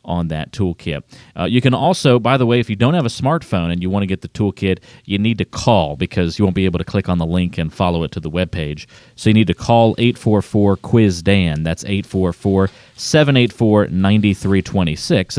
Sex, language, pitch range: male, English, 90-115 Hz